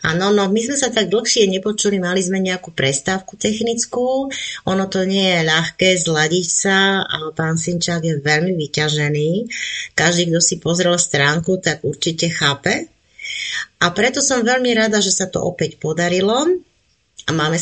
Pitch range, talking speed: 155-205 Hz, 155 wpm